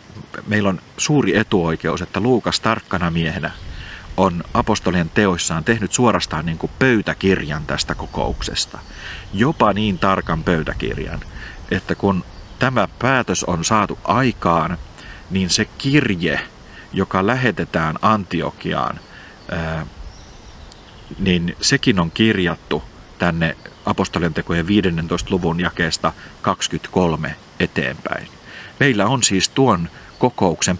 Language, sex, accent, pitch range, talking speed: Finnish, male, native, 85-105 Hz, 100 wpm